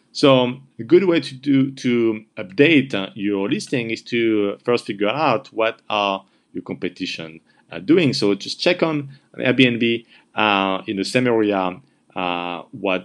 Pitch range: 95-130 Hz